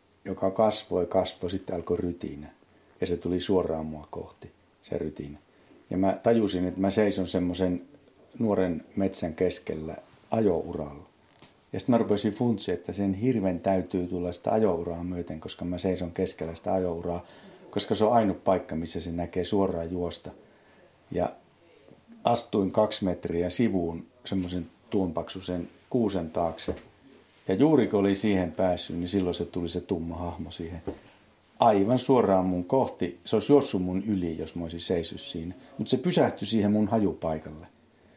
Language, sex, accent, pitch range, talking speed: Finnish, male, native, 85-105 Hz, 150 wpm